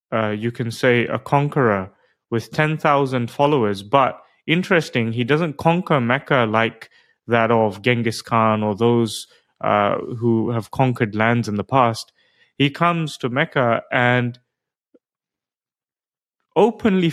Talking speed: 125 wpm